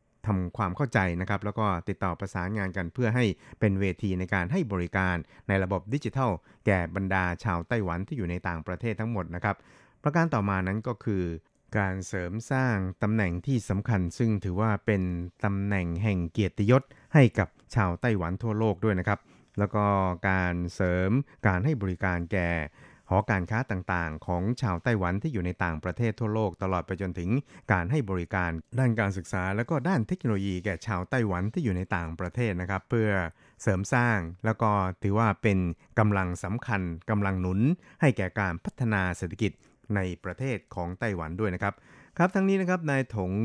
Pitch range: 90-110 Hz